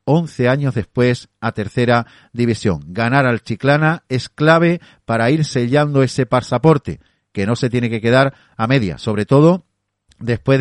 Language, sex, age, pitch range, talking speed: Spanish, male, 40-59, 105-135 Hz, 155 wpm